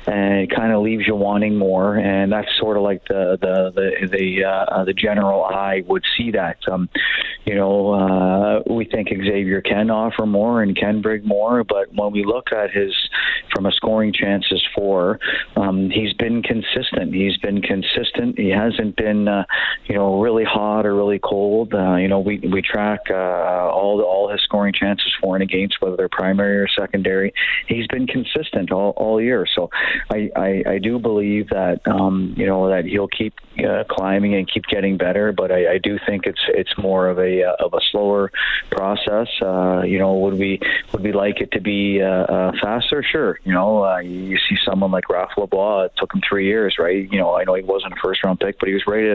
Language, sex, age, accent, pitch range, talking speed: English, male, 40-59, American, 95-105 Hz, 210 wpm